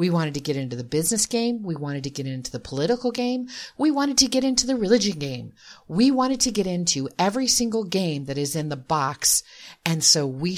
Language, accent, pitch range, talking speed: English, American, 135-210 Hz, 225 wpm